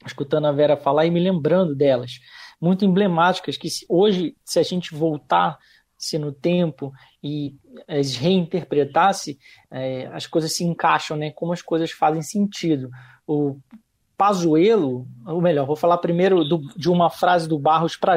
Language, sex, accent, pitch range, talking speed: Portuguese, male, Brazilian, 140-170 Hz, 140 wpm